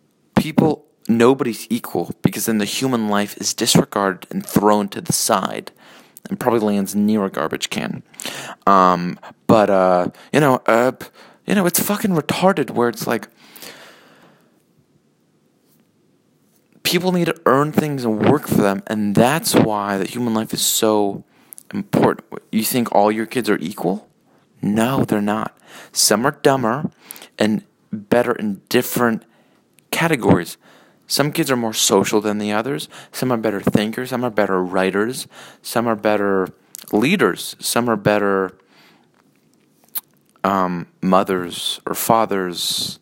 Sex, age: male, 30-49